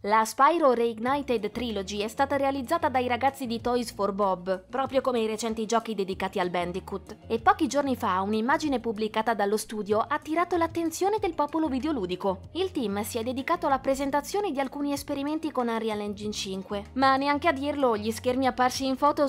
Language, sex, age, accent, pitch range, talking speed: Italian, female, 20-39, native, 215-290 Hz, 180 wpm